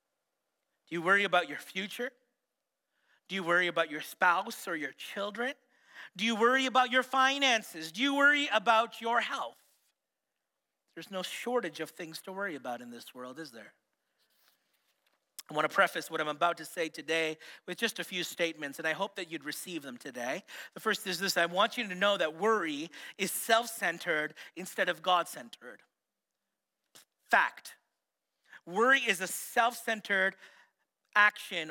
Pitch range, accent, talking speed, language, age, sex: 170-245 Hz, American, 160 wpm, English, 40-59, male